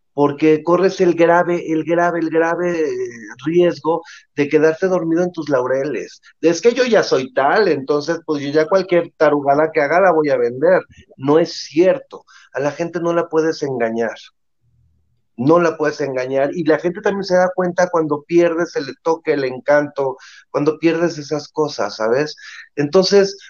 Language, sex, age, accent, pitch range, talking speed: Spanish, male, 40-59, Mexican, 160-210 Hz, 170 wpm